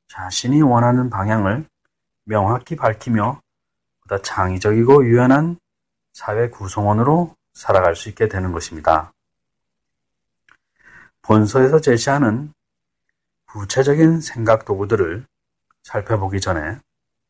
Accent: native